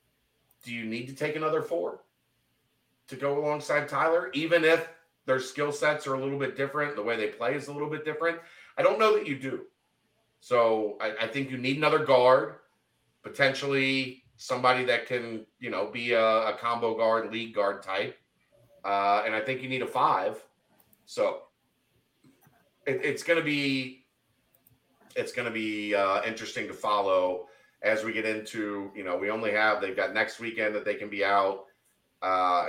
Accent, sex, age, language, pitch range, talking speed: American, male, 40-59, English, 110-145 Hz, 180 wpm